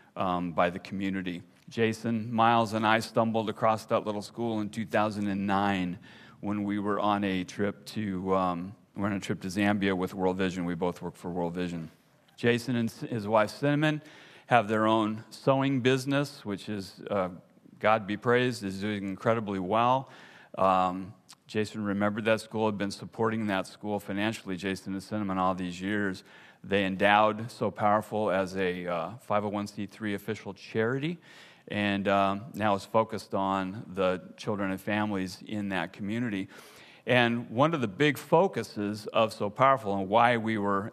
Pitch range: 100-115 Hz